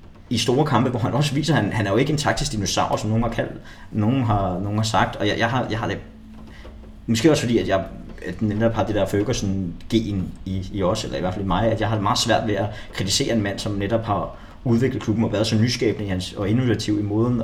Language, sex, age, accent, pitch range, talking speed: Danish, male, 20-39, native, 100-115 Hz, 270 wpm